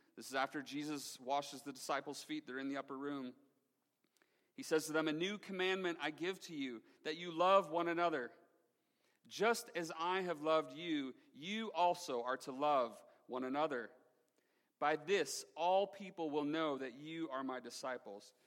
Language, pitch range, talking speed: English, 150-195 Hz, 170 wpm